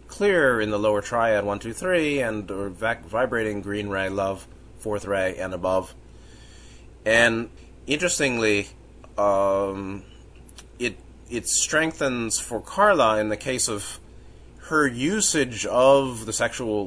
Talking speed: 130 wpm